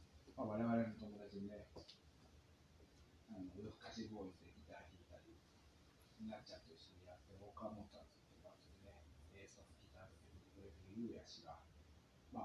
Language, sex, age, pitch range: Japanese, male, 30-49, 80-110 Hz